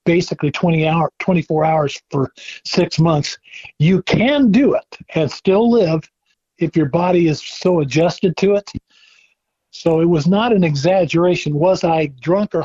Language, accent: English, American